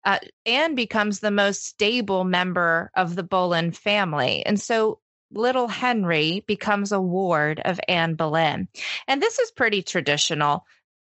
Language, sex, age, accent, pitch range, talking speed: English, female, 20-39, American, 165-215 Hz, 140 wpm